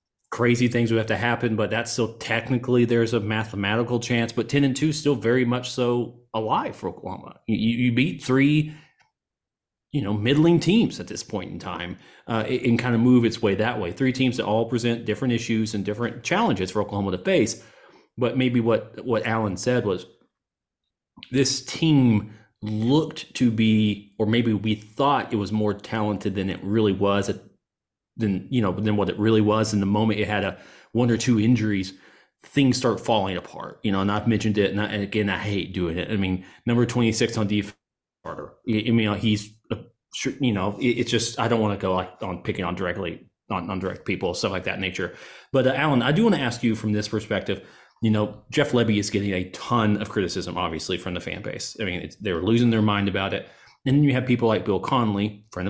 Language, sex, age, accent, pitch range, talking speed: English, male, 30-49, American, 105-125 Hz, 215 wpm